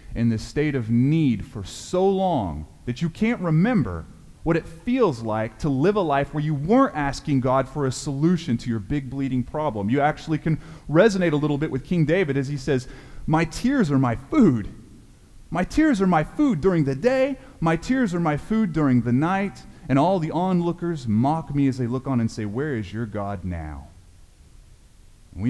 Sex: male